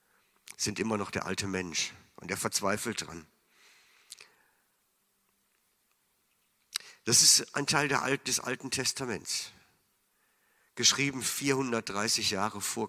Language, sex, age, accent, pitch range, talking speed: German, male, 50-69, German, 100-115 Hz, 100 wpm